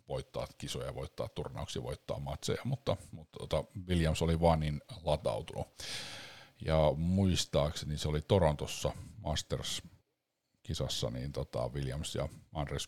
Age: 50-69